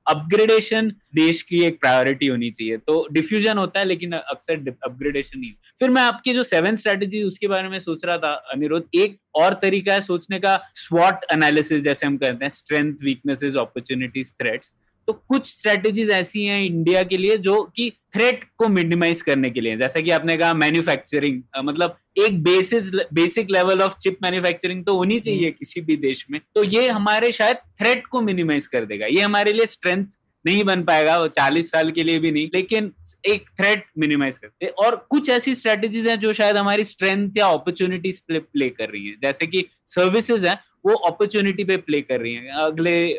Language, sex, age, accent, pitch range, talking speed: Hindi, male, 20-39, native, 150-200 Hz, 140 wpm